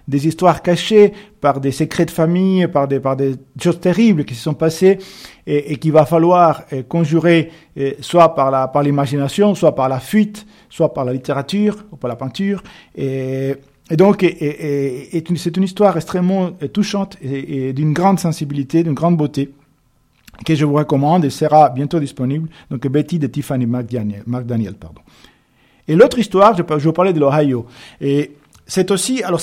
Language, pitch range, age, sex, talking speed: French, 130-175 Hz, 50-69, male, 180 wpm